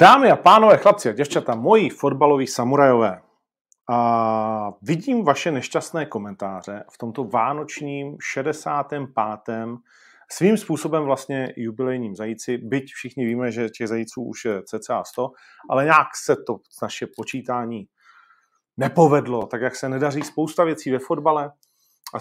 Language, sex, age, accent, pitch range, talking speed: Czech, male, 40-59, native, 120-145 Hz, 130 wpm